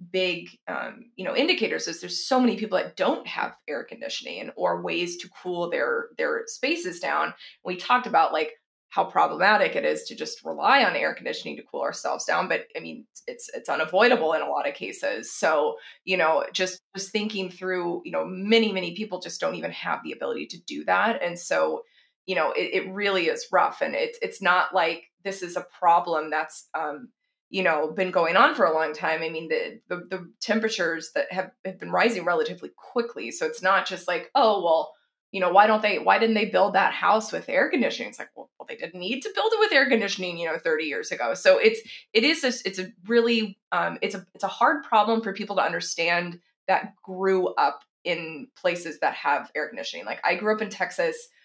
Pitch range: 175-275 Hz